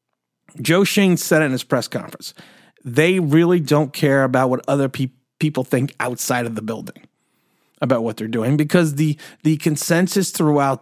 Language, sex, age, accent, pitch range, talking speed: English, male, 30-49, American, 150-225 Hz, 170 wpm